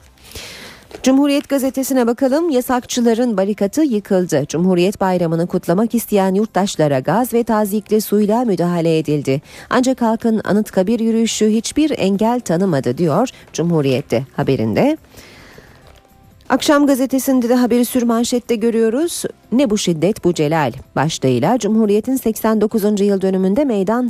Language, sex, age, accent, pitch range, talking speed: Turkish, female, 40-59, native, 165-245 Hz, 110 wpm